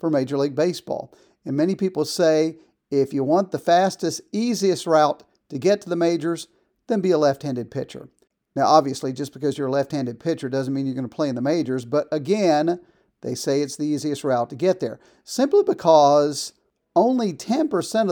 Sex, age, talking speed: male, 50-69, 190 wpm